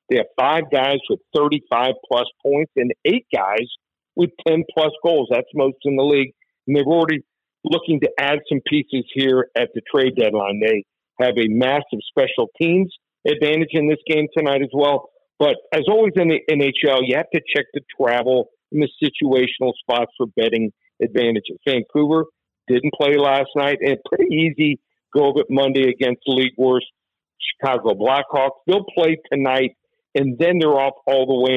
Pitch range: 125-155 Hz